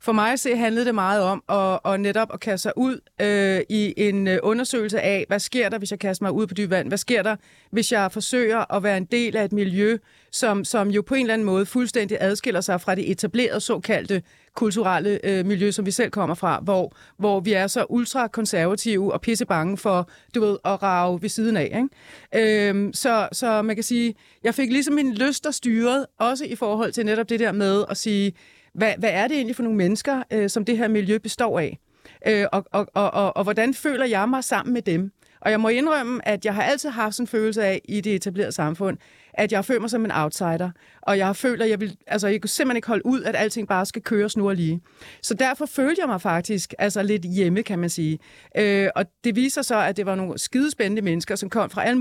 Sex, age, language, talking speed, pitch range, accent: female, 30-49, Danish, 240 wpm, 195-235 Hz, native